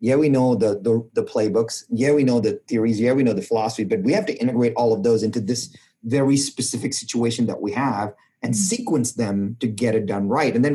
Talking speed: 240 wpm